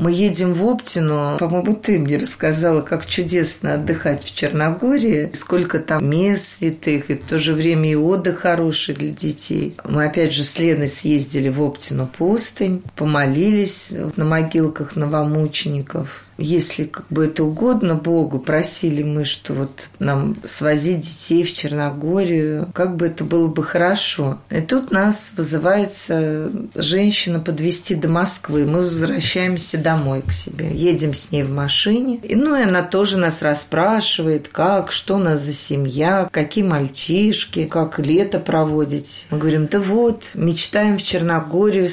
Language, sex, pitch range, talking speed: Russian, female, 155-185 Hz, 145 wpm